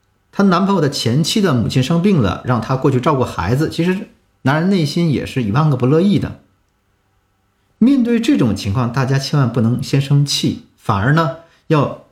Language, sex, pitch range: Chinese, male, 100-155 Hz